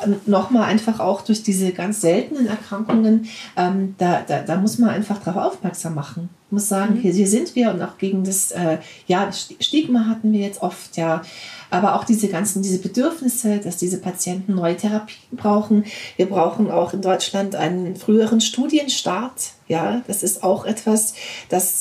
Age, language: 40-59, German